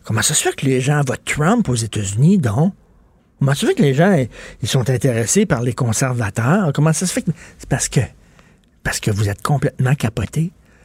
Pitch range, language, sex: 135-175 Hz, French, male